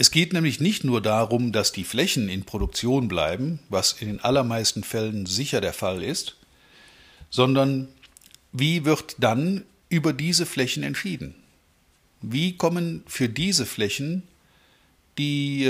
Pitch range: 110-145 Hz